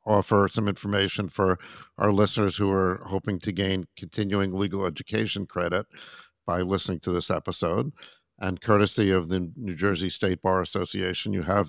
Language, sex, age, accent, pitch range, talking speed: English, male, 50-69, American, 95-105 Hz, 160 wpm